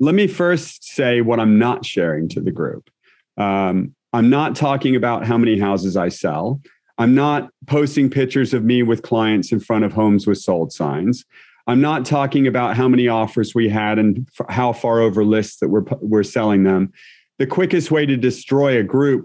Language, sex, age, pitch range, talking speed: English, male, 40-59, 110-140 Hz, 195 wpm